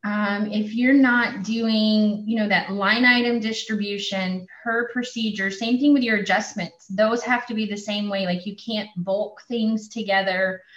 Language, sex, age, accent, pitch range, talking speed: English, female, 20-39, American, 195-230 Hz, 175 wpm